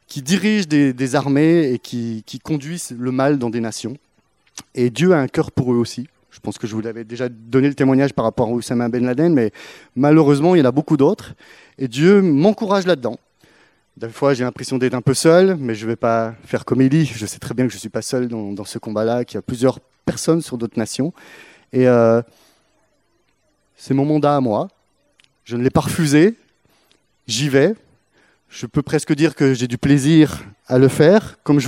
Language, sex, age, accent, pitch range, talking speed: French, male, 30-49, French, 120-155 Hz, 220 wpm